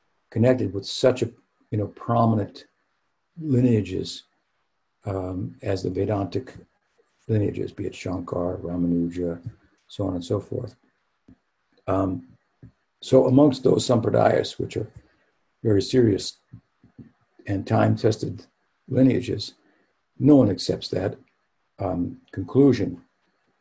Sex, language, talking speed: male, English, 100 wpm